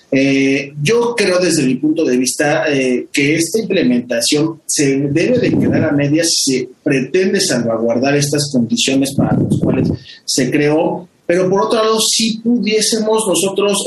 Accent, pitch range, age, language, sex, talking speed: Mexican, 145-185 Hz, 30-49, Spanish, male, 155 wpm